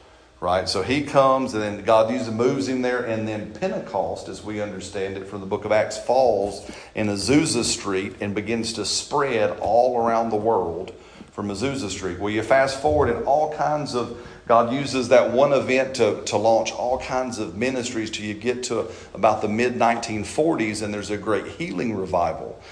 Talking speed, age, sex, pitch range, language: 185 wpm, 40-59, male, 105-115 Hz, English